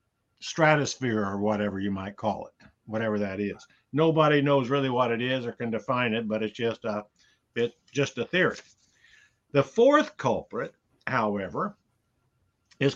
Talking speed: 155 wpm